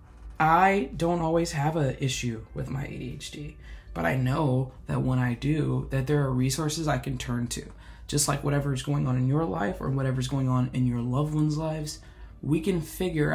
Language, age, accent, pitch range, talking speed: English, 20-39, American, 125-150 Hz, 200 wpm